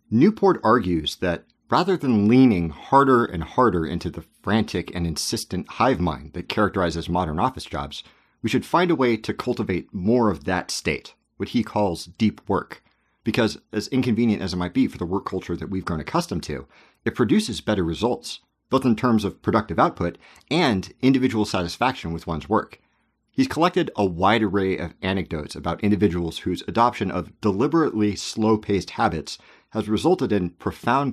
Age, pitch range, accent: 40-59, 90-115 Hz, American